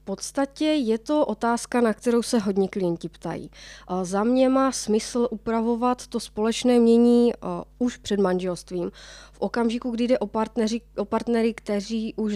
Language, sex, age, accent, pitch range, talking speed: Czech, female, 20-39, native, 195-220 Hz, 150 wpm